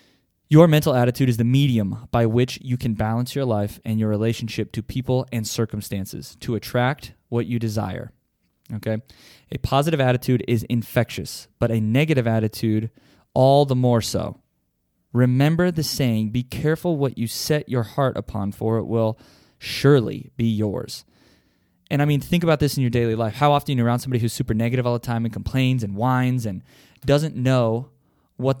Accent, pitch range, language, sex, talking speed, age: American, 110-135 Hz, English, male, 180 wpm, 20-39